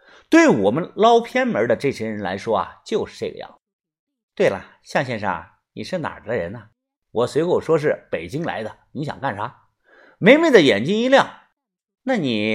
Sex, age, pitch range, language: male, 50-69, 150-235 Hz, Chinese